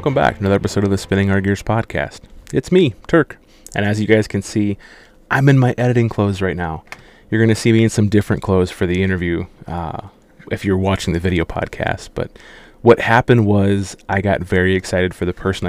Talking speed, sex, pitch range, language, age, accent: 220 wpm, male, 90-105 Hz, English, 20-39, American